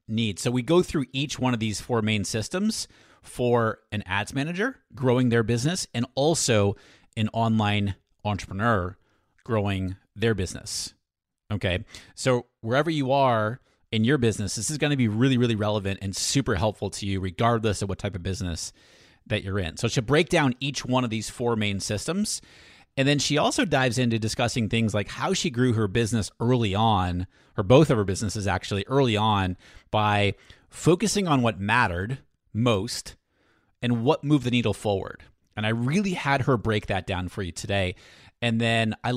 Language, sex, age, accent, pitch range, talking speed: English, male, 30-49, American, 100-125 Hz, 180 wpm